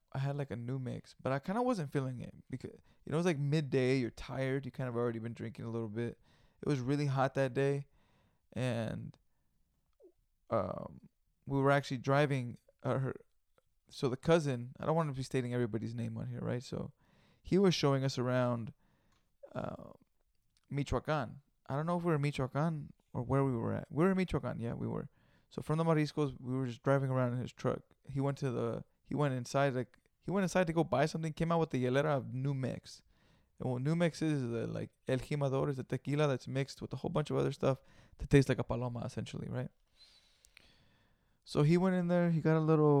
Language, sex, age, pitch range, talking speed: English, male, 20-39, 125-150 Hz, 220 wpm